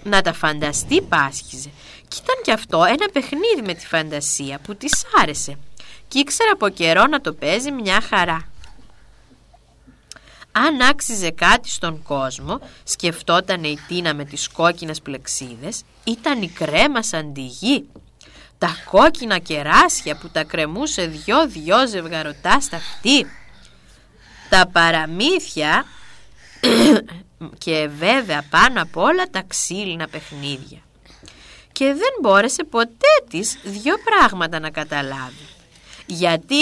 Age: 20-39